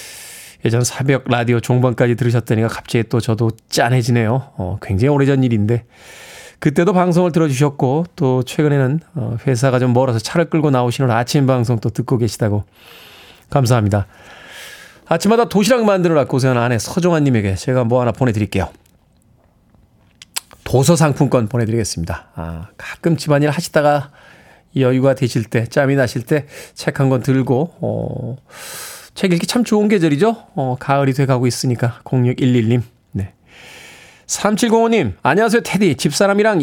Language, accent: Korean, native